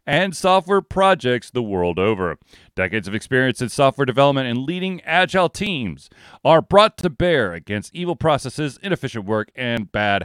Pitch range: 115-160 Hz